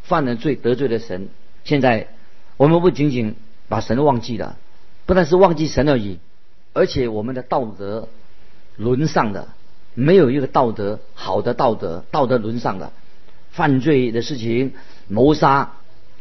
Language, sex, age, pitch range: Chinese, male, 50-69, 110-155 Hz